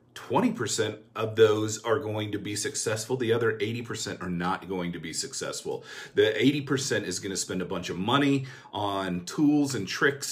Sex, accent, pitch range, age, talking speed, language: male, American, 100-130 Hz, 40-59, 180 wpm, English